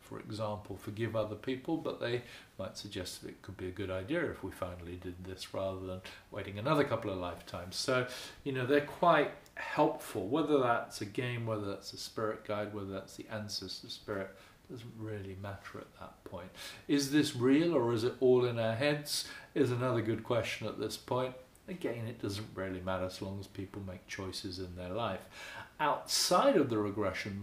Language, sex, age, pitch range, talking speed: English, male, 40-59, 100-125 Hz, 195 wpm